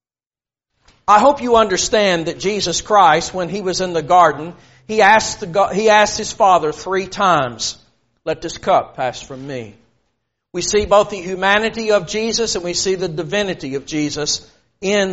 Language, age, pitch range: English, 50-69, 170-225 Hz